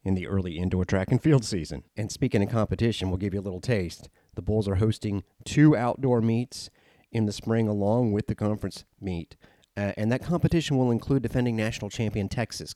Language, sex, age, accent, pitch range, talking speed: English, male, 30-49, American, 100-120 Hz, 200 wpm